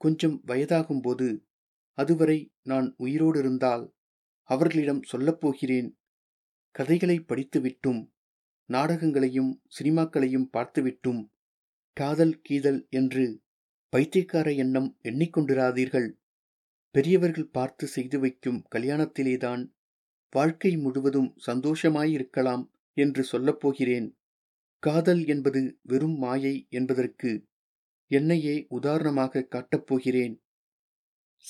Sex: male